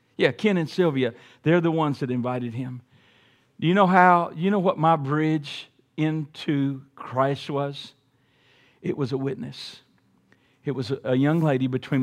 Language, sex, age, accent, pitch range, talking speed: English, male, 50-69, American, 130-175 Hz, 160 wpm